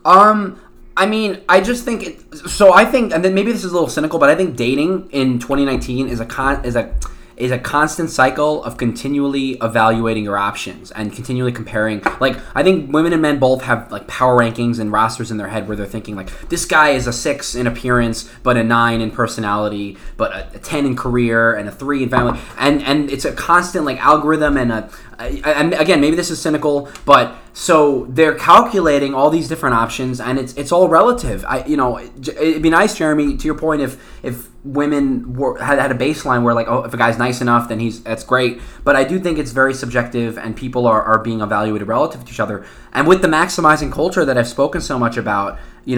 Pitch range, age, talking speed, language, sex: 115-150 Hz, 20-39, 225 wpm, English, male